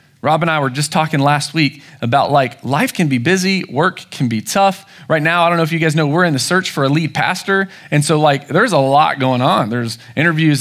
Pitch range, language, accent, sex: 140-175 Hz, English, American, male